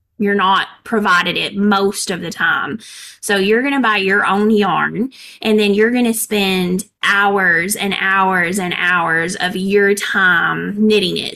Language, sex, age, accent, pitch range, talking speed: English, female, 20-39, American, 185-215 Hz, 170 wpm